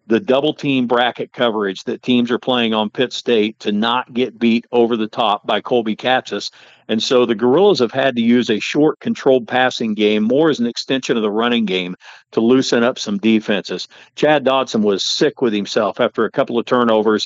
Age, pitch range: 50-69, 110-125 Hz